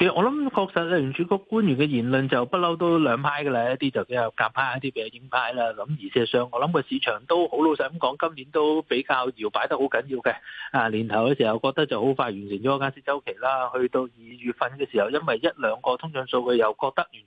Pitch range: 120-155 Hz